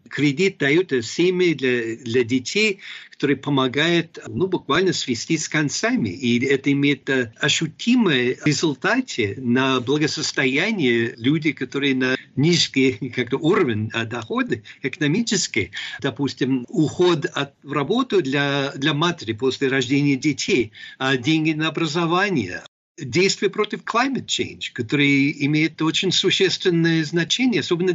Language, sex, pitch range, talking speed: Russian, male, 135-175 Hz, 110 wpm